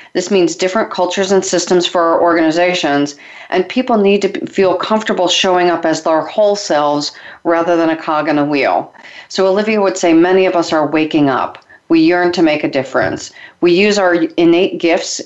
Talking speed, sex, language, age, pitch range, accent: 195 wpm, female, English, 40-59, 165-195 Hz, American